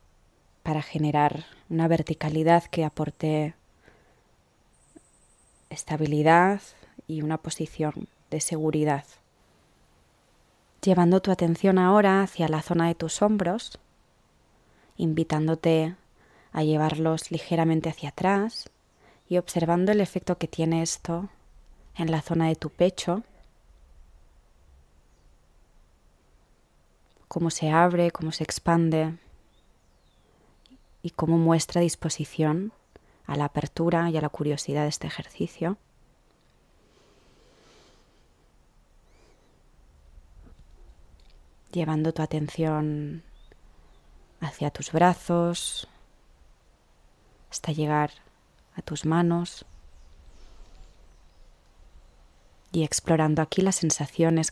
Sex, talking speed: female, 85 wpm